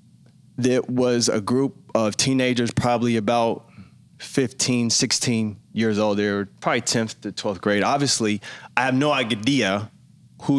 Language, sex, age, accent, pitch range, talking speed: English, male, 20-39, American, 110-125 Hz, 140 wpm